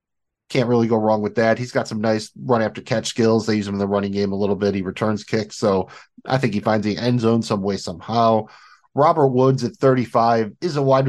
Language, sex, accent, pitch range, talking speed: English, male, American, 110-135 Hz, 235 wpm